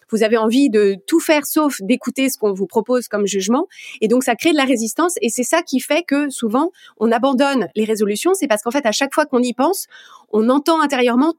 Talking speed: 235 wpm